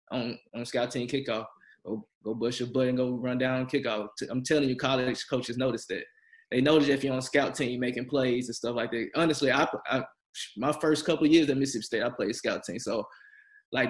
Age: 20-39